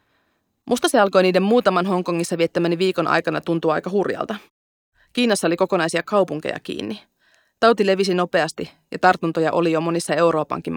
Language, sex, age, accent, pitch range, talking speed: Finnish, female, 30-49, native, 170-200 Hz, 145 wpm